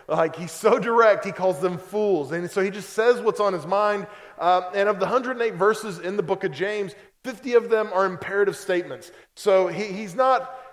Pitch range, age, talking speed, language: 190-240 Hz, 20-39, 205 wpm, English